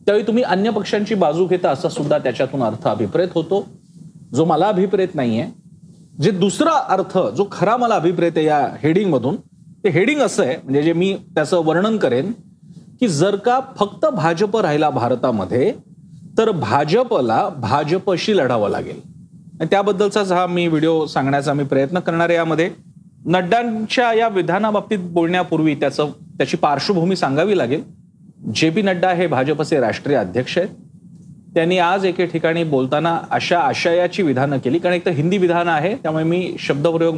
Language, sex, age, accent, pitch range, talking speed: Marathi, male, 40-59, native, 155-185 Hz, 125 wpm